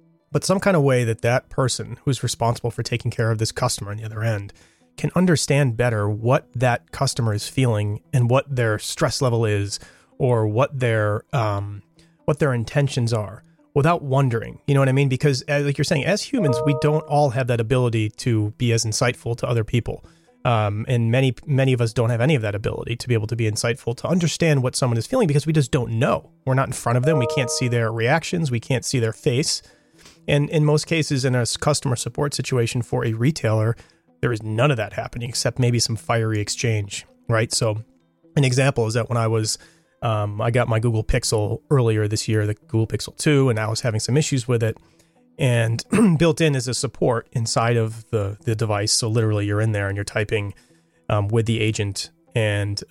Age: 30-49